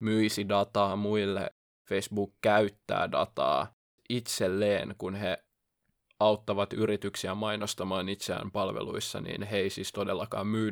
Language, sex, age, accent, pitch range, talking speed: Finnish, male, 20-39, native, 100-115 Hz, 110 wpm